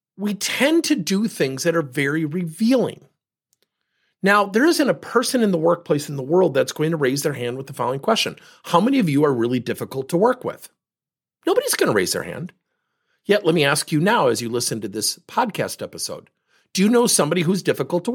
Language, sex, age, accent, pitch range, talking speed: English, male, 50-69, American, 160-230 Hz, 220 wpm